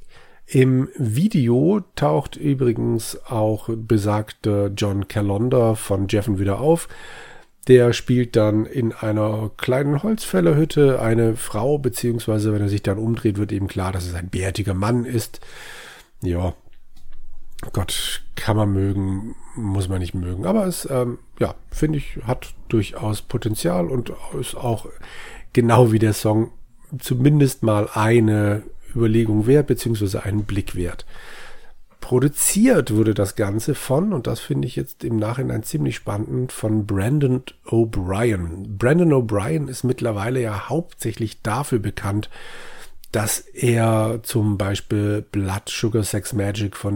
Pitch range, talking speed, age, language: 105-125 Hz, 135 wpm, 40-59, German